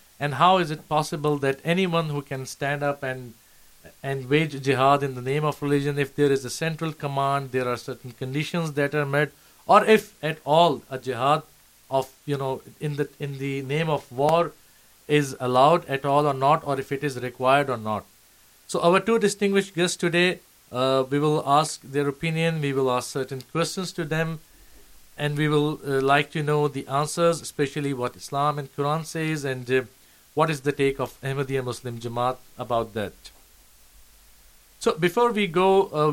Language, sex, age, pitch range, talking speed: Urdu, male, 50-69, 130-155 Hz, 190 wpm